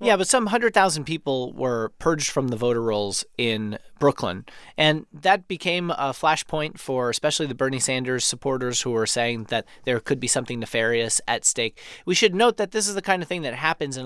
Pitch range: 125-170 Hz